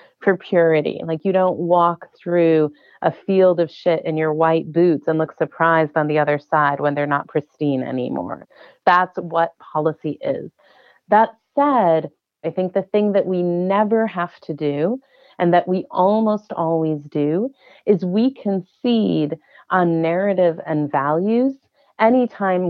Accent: American